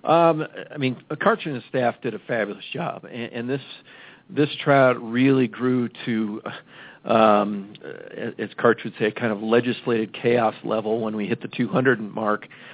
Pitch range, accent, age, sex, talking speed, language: 115-130 Hz, American, 50-69, male, 170 wpm, English